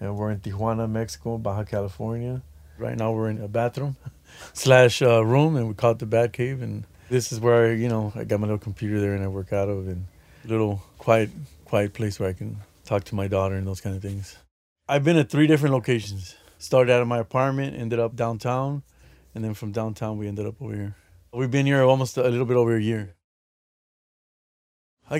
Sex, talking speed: male, 220 wpm